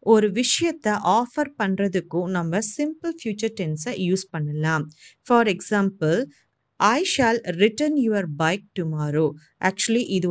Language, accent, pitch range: Tamil, native, 175-240 Hz